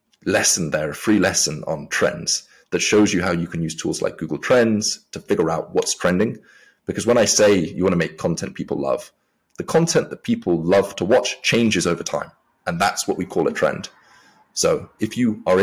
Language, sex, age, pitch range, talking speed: English, male, 20-39, 90-115 Hz, 205 wpm